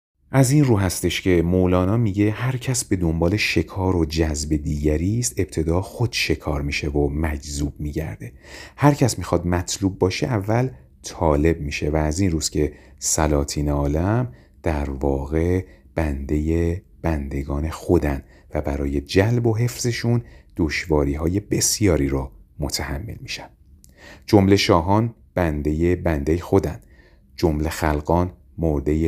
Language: Persian